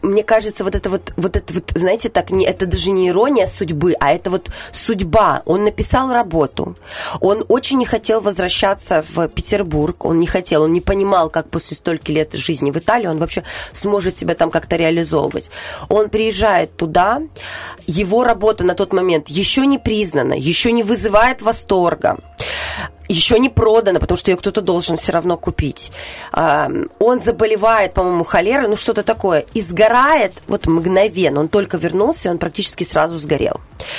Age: 20-39